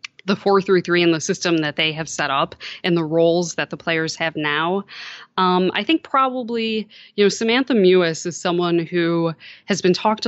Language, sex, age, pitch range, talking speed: English, female, 20-39, 165-200 Hz, 185 wpm